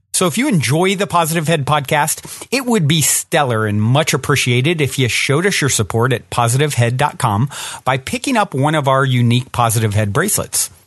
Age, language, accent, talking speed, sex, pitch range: 40-59, English, American, 180 wpm, male, 120-160 Hz